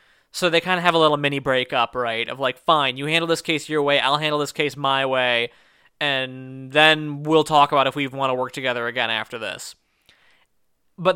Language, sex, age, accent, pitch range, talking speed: English, male, 20-39, American, 135-155 Hz, 215 wpm